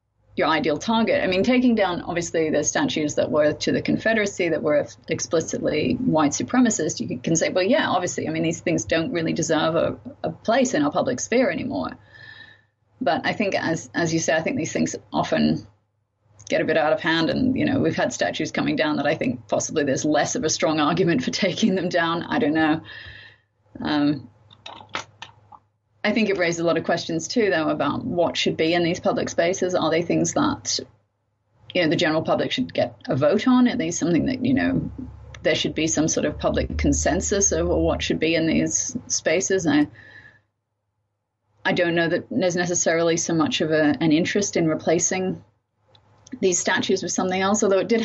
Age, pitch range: 30-49, 150-225 Hz